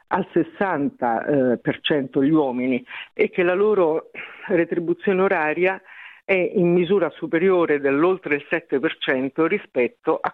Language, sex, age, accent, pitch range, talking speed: Italian, female, 50-69, native, 150-180 Hz, 130 wpm